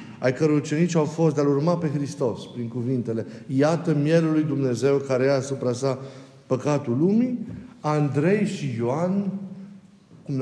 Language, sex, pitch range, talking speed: Romanian, male, 140-180 Hz, 140 wpm